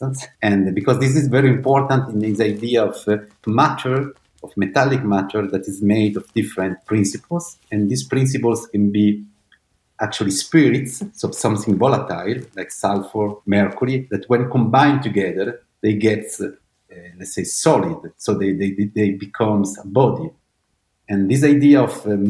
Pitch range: 100-130 Hz